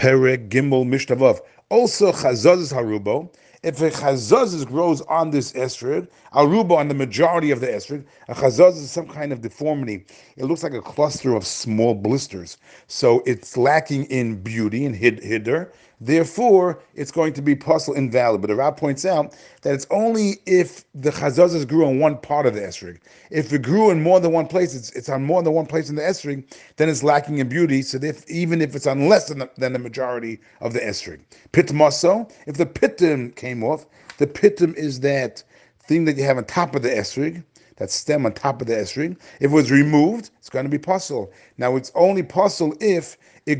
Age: 40-59